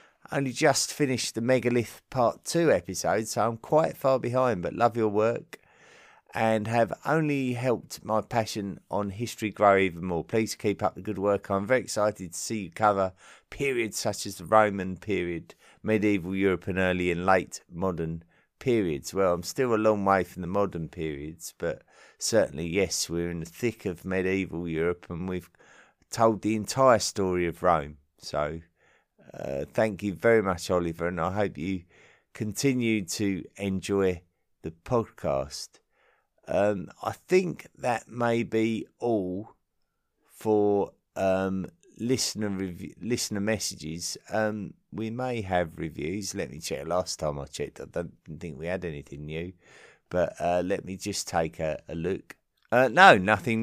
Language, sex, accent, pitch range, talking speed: English, male, British, 90-115 Hz, 160 wpm